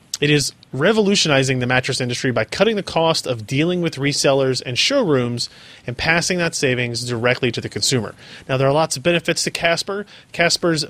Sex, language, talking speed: male, English, 180 wpm